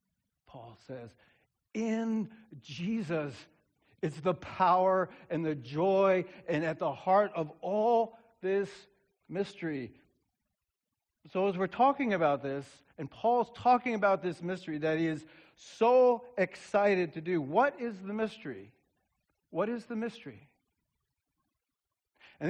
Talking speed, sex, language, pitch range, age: 125 wpm, male, English, 155-205 Hz, 60-79